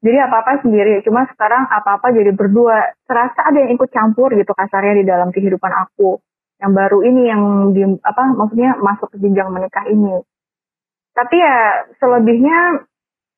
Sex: female